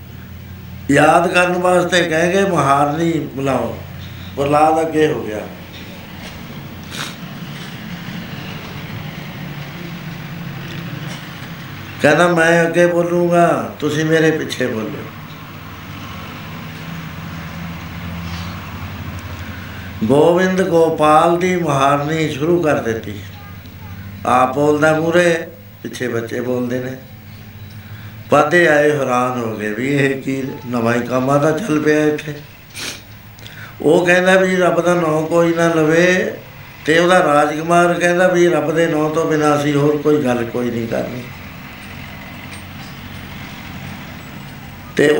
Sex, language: male, Punjabi